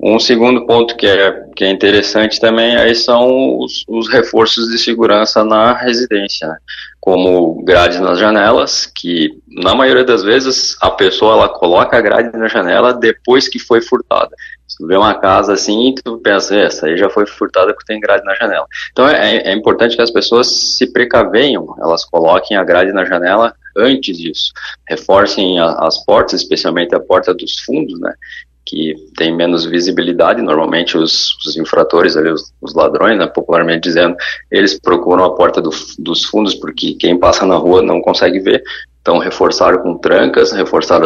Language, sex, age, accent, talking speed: Portuguese, male, 20-39, Brazilian, 170 wpm